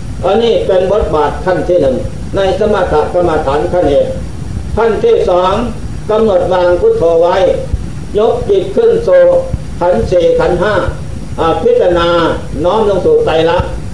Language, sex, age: Thai, male, 60-79